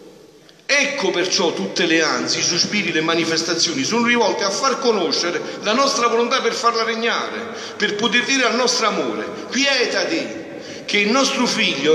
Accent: native